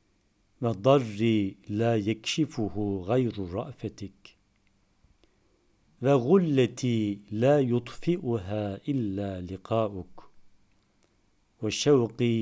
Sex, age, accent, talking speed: male, 50-69, native, 55 wpm